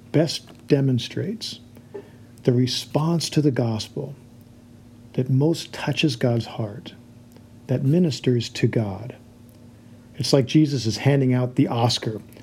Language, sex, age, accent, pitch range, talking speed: English, male, 50-69, American, 120-130 Hz, 115 wpm